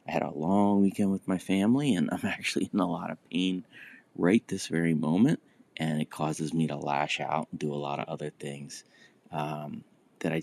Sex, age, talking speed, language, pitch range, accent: male, 30-49, 215 wpm, English, 80-95 Hz, American